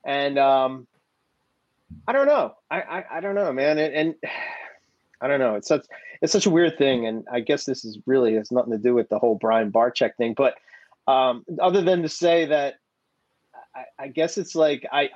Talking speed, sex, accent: 210 wpm, male, American